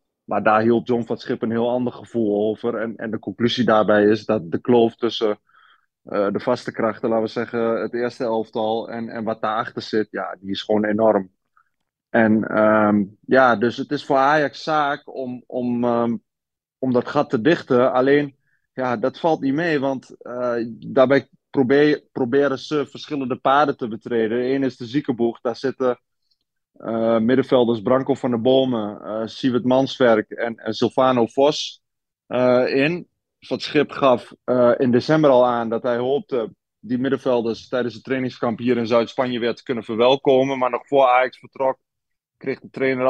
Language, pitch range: Dutch, 115-130 Hz